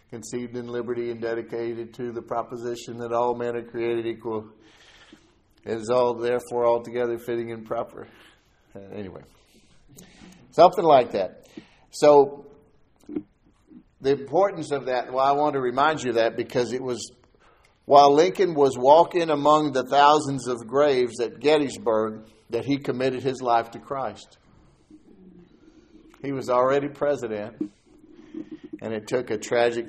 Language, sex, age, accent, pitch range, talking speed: English, male, 50-69, American, 115-140 Hz, 140 wpm